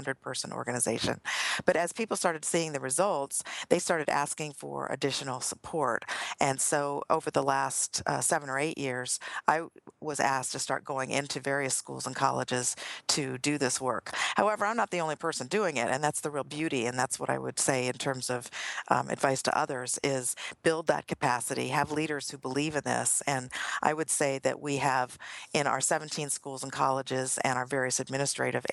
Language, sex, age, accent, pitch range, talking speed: English, female, 50-69, American, 130-155 Hz, 195 wpm